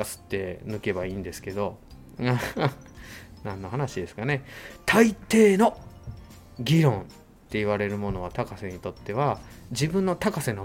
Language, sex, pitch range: Japanese, male, 100-140 Hz